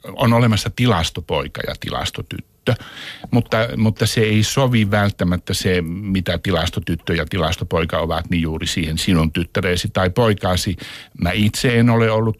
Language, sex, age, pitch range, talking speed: Finnish, male, 60-79, 85-105 Hz, 140 wpm